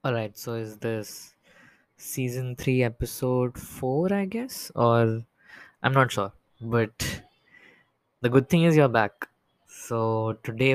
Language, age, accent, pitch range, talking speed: English, 10-29, Indian, 115-135 Hz, 130 wpm